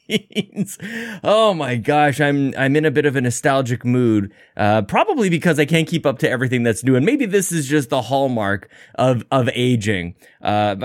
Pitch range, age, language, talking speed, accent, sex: 120-185 Hz, 20-39, English, 190 wpm, American, male